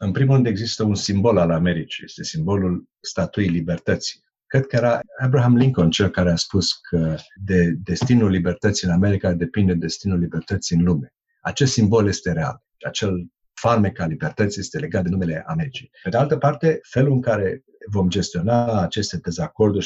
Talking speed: 170 wpm